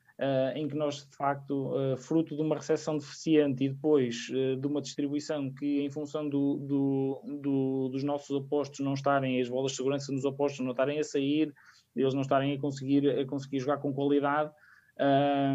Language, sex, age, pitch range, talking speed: Portuguese, male, 20-39, 125-140 Hz, 195 wpm